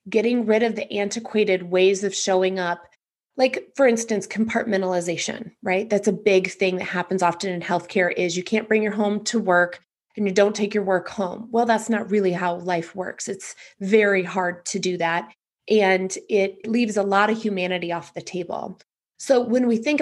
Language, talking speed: English, 195 wpm